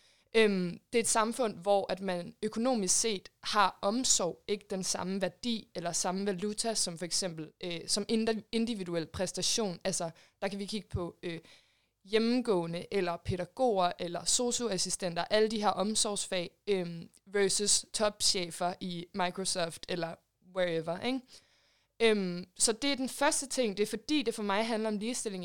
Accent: native